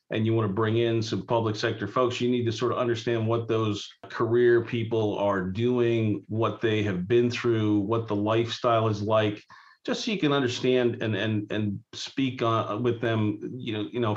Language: English